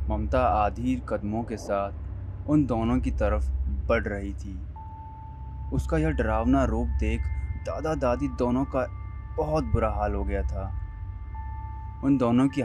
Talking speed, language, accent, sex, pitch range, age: 140 wpm, Hindi, native, male, 80-110 Hz, 20-39